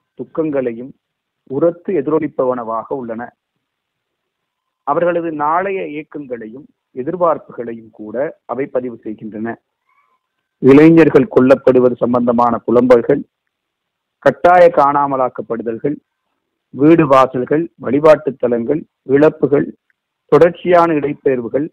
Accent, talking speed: native, 65 wpm